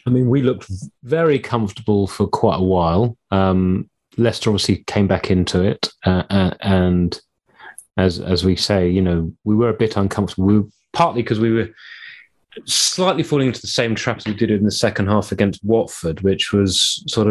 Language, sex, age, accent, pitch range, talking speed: English, male, 30-49, British, 95-110 Hz, 190 wpm